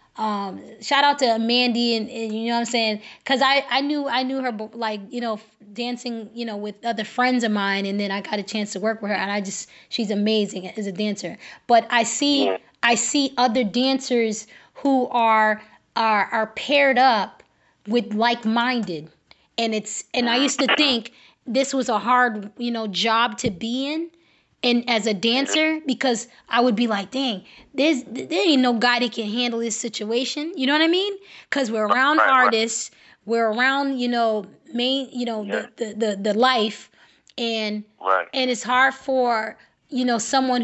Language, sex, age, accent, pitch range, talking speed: English, female, 20-39, American, 220-255 Hz, 190 wpm